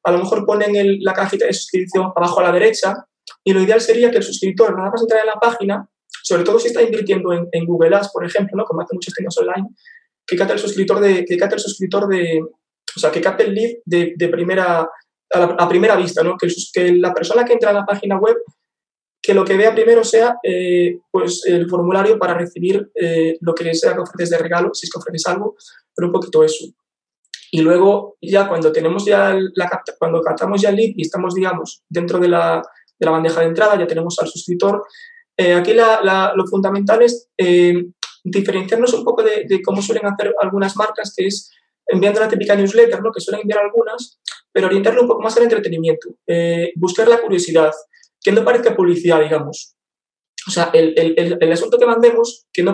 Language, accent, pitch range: Spanish, Spanish, 175-225 Hz